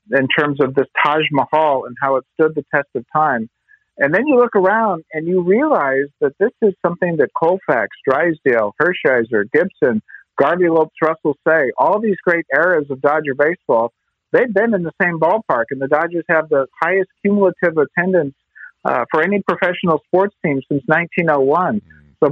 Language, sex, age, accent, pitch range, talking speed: English, male, 50-69, American, 140-175 Hz, 170 wpm